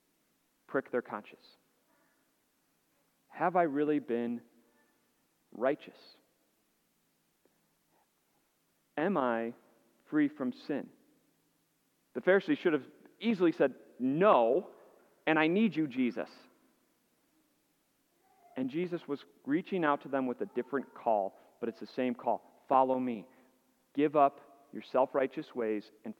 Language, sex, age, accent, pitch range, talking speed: English, male, 40-59, American, 125-175 Hz, 110 wpm